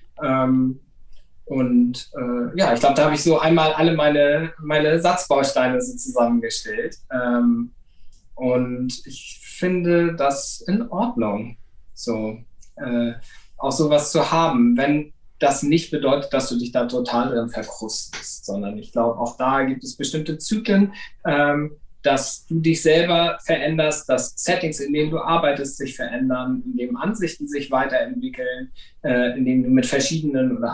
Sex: male